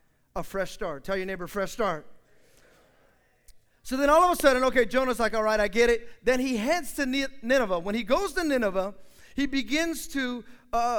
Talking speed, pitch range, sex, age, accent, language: 200 wpm, 205-285 Hz, male, 30-49, American, English